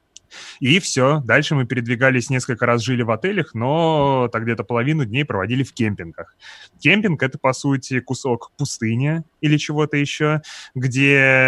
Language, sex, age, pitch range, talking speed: Russian, male, 20-39, 115-140 Hz, 145 wpm